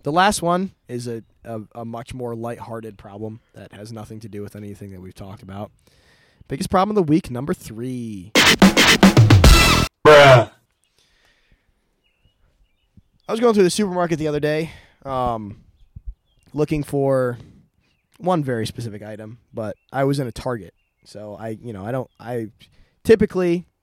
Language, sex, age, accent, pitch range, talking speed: English, male, 20-39, American, 105-135 Hz, 150 wpm